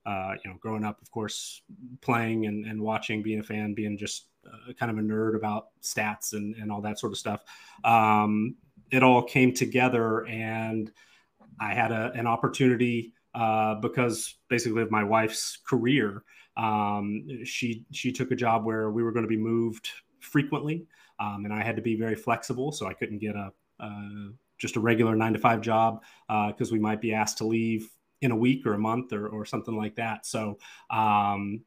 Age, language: 30-49, English